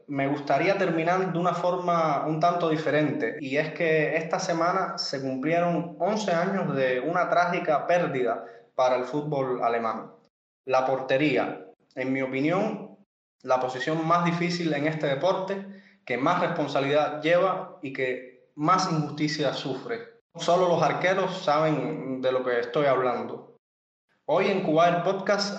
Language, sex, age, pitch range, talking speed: Spanish, male, 20-39, 135-175 Hz, 140 wpm